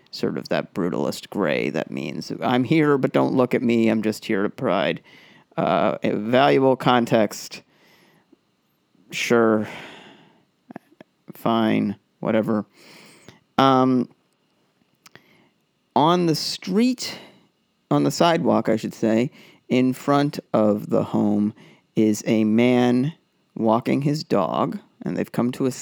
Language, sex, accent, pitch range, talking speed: English, male, American, 105-130 Hz, 120 wpm